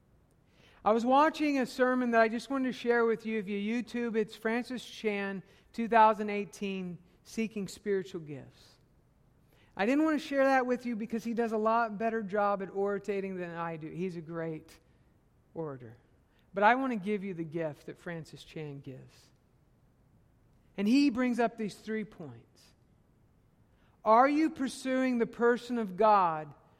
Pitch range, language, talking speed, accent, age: 165-235 Hz, English, 160 wpm, American, 50-69